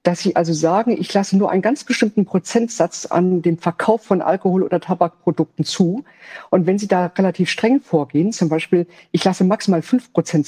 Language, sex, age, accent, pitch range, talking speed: German, female, 50-69, German, 170-210 Hz, 190 wpm